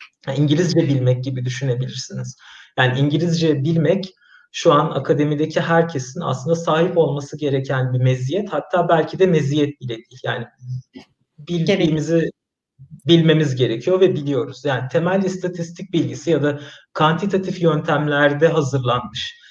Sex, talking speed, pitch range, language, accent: male, 115 wpm, 135-165 Hz, Turkish, native